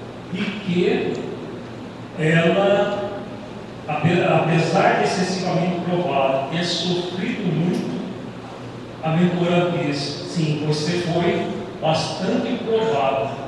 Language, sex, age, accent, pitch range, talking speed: Portuguese, male, 40-59, Brazilian, 160-190 Hz, 85 wpm